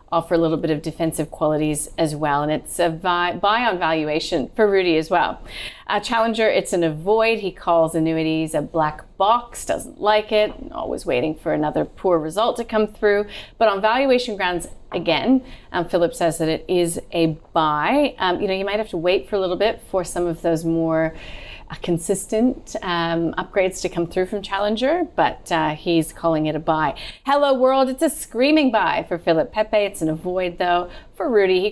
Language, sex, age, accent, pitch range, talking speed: English, female, 30-49, American, 165-225 Hz, 195 wpm